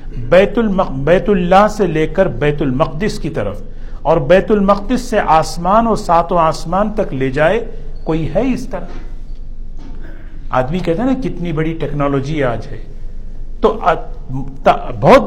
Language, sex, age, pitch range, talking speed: Urdu, male, 50-69, 140-210 Hz, 145 wpm